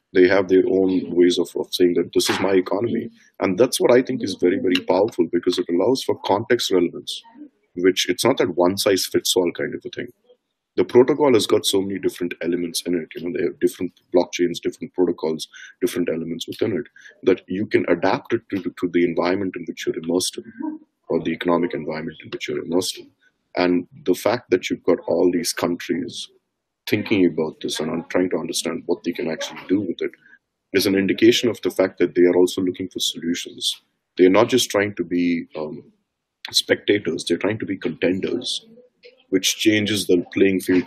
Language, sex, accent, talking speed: English, male, Indian, 205 wpm